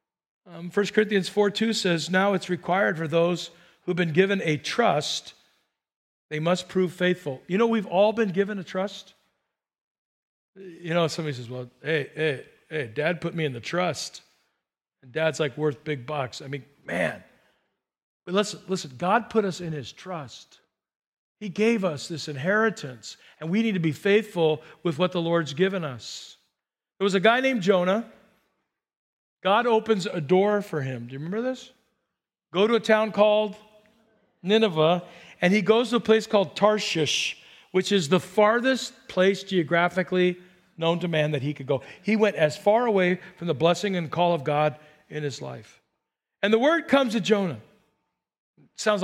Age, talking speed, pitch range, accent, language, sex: 50-69, 175 wpm, 160-215 Hz, American, English, male